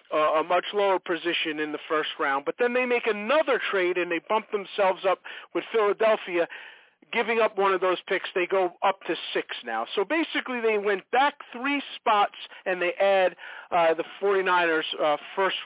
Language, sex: English, male